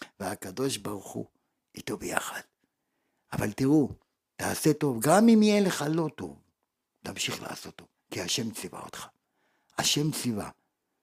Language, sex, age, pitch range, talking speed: Hebrew, male, 50-69, 115-190 Hz, 130 wpm